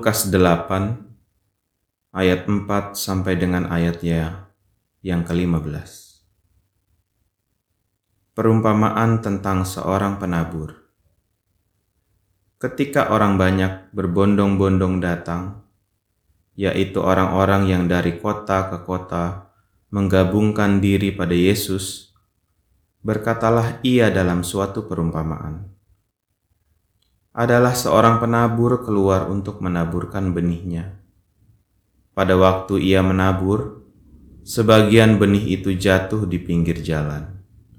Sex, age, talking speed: male, 30-49, 85 wpm